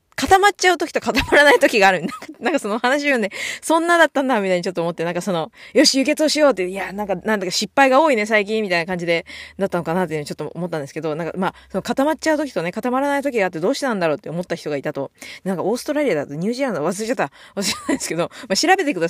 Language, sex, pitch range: Japanese, female, 175-280 Hz